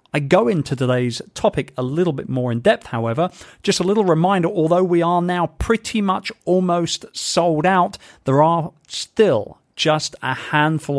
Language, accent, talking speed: English, British, 170 wpm